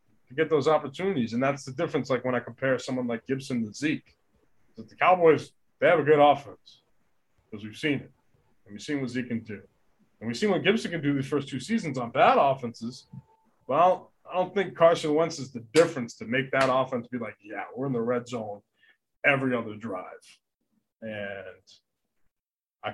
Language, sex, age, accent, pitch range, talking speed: English, male, 30-49, American, 115-150 Hz, 195 wpm